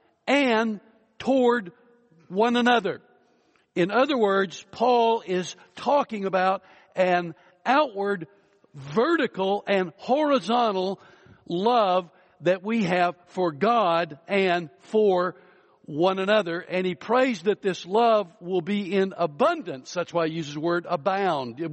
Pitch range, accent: 175-220 Hz, American